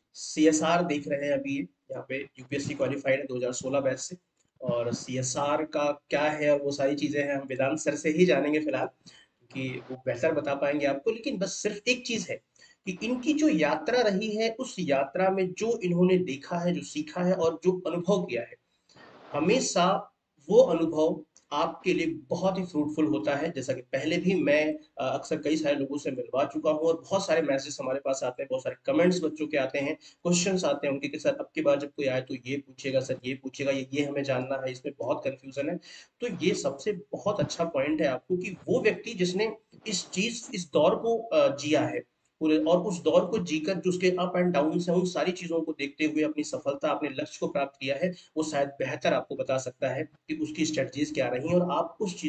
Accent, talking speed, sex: native, 195 wpm, male